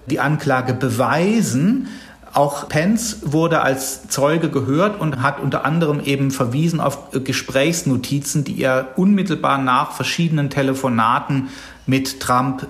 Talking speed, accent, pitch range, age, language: 120 wpm, German, 130-155 Hz, 40-59, German